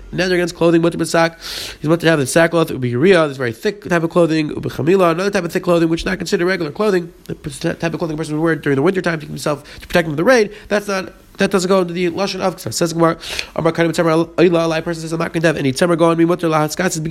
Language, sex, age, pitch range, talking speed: English, male, 30-49, 150-185 Hz, 245 wpm